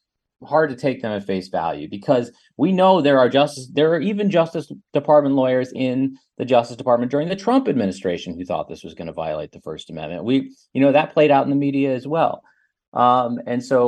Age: 30-49